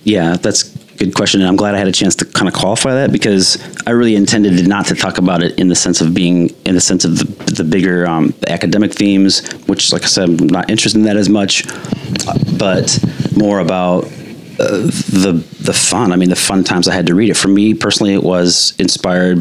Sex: male